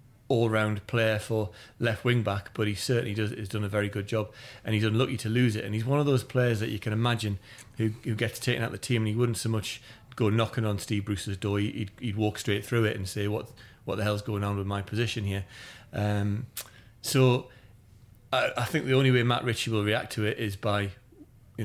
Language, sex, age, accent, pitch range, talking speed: English, male, 30-49, British, 105-120 Hz, 235 wpm